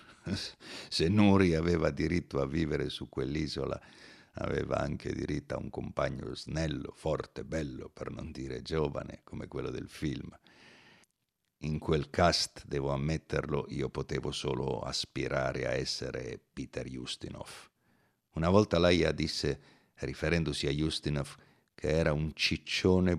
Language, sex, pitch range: Italian, male, 75-90 Hz